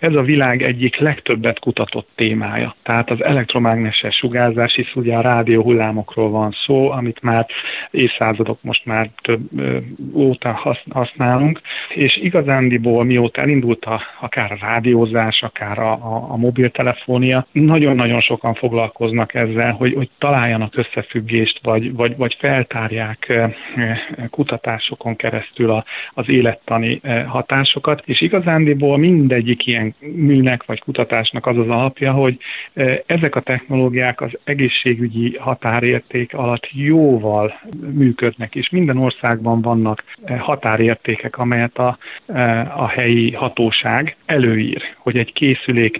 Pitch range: 115-130 Hz